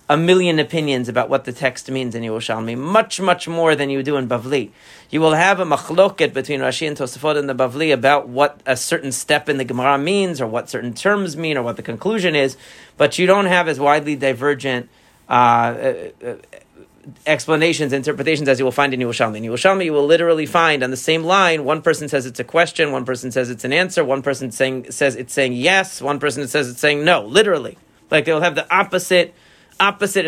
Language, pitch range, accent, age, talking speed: English, 130-175 Hz, American, 40-59, 210 wpm